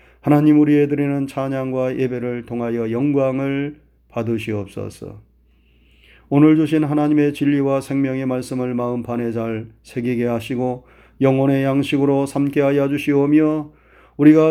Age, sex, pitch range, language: 30-49, male, 120-150 Hz, Korean